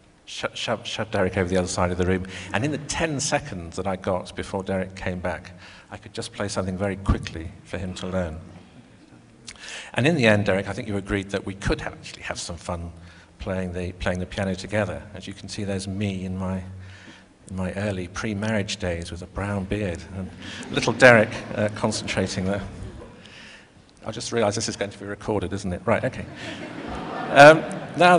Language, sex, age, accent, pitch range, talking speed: Russian, male, 50-69, British, 95-110 Hz, 200 wpm